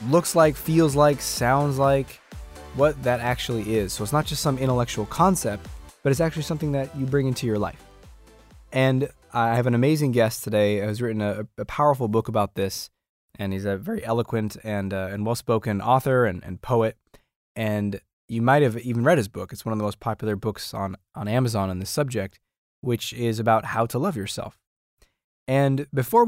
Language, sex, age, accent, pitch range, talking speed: English, male, 20-39, American, 105-135 Hz, 195 wpm